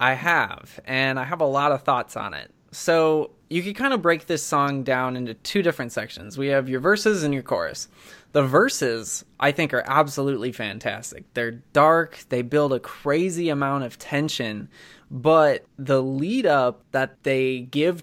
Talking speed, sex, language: 175 wpm, male, English